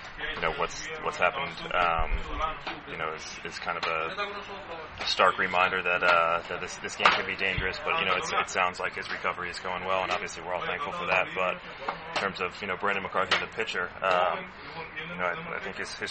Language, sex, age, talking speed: English, male, 20-39, 225 wpm